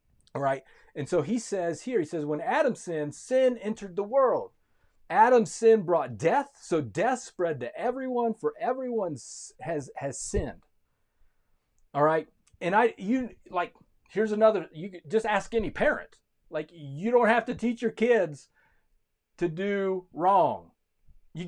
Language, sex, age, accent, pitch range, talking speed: English, male, 40-59, American, 160-230 Hz, 155 wpm